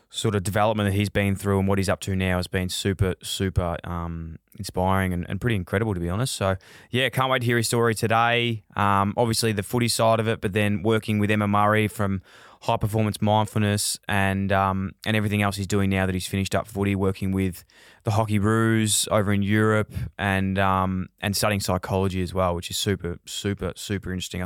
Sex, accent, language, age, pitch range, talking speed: male, Australian, English, 20-39, 95-110 Hz, 210 wpm